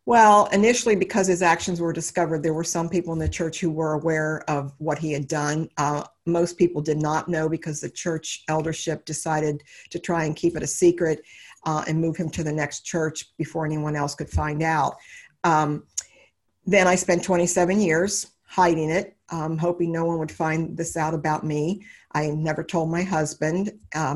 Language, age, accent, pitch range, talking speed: English, 50-69, American, 155-175 Hz, 195 wpm